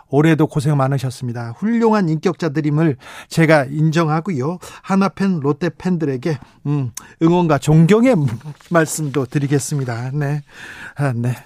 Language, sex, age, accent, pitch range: Korean, male, 40-59, native, 145-190 Hz